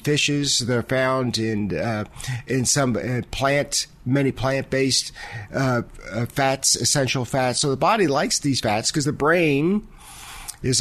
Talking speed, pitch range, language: 145 wpm, 120-140 Hz, English